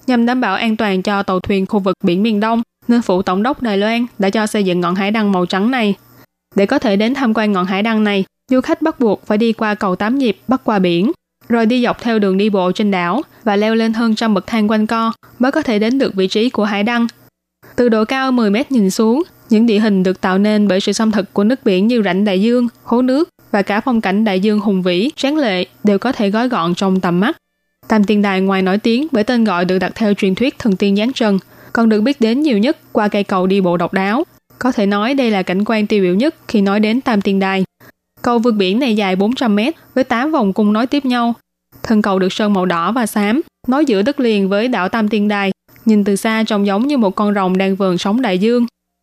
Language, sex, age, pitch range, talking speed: Vietnamese, female, 20-39, 195-235 Hz, 265 wpm